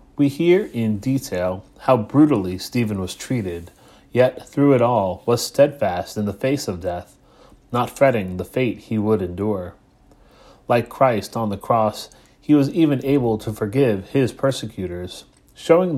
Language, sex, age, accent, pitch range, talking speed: English, male, 30-49, American, 105-135 Hz, 155 wpm